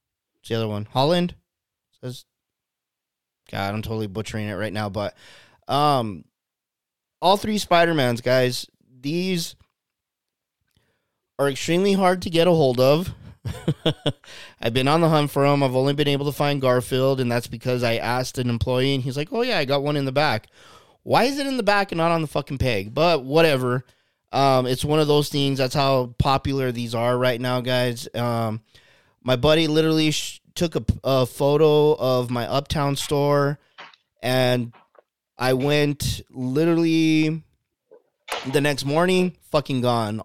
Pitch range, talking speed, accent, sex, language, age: 115-145 Hz, 160 wpm, American, male, English, 20-39